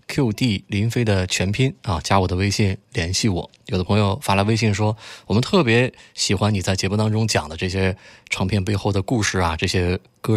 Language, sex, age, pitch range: Chinese, male, 20-39, 95-130 Hz